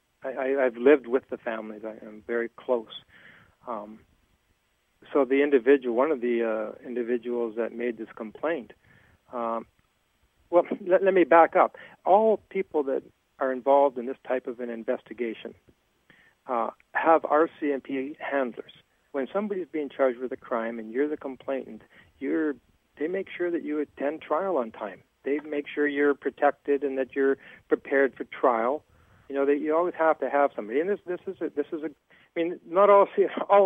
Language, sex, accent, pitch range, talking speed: English, male, American, 120-160 Hz, 175 wpm